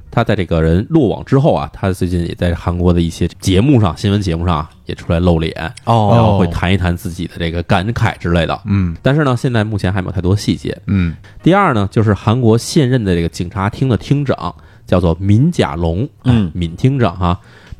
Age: 20-39